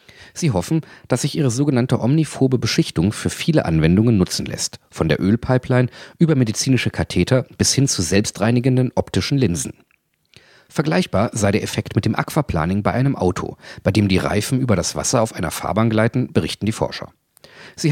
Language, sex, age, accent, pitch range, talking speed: German, male, 40-59, German, 95-130 Hz, 165 wpm